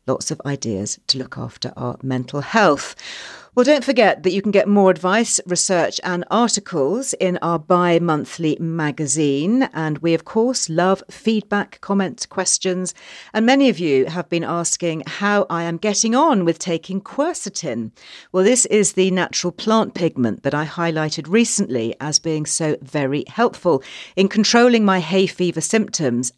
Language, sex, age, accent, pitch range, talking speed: English, female, 50-69, British, 150-200 Hz, 160 wpm